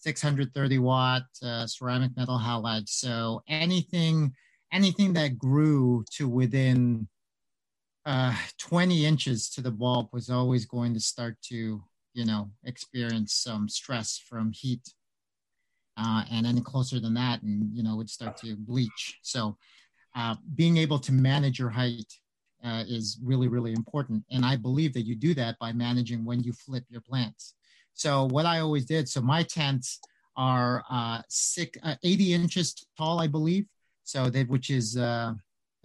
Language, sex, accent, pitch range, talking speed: English, male, American, 120-145 Hz, 155 wpm